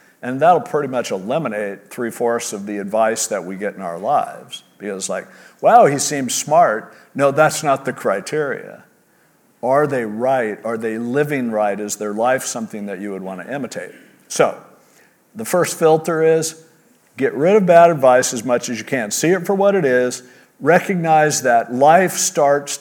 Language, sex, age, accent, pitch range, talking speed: English, male, 50-69, American, 125-170 Hz, 180 wpm